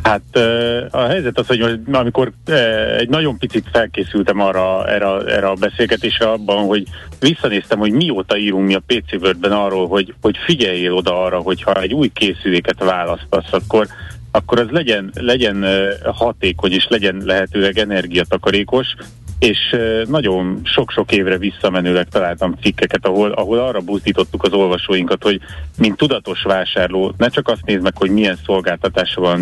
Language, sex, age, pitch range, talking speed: Hungarian, male, 30-49, 95-115 Hz, 145 wpm